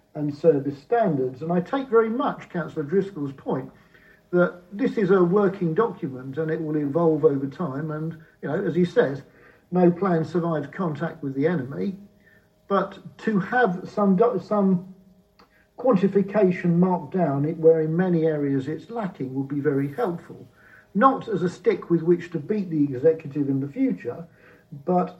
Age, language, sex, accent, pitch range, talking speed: 50-69, English, male, British, 150-190 Hz, 165 wpm